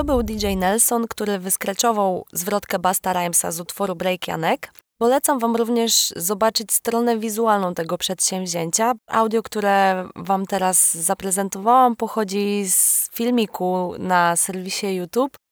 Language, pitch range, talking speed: Polish, 190-245 Hz, 125 wpm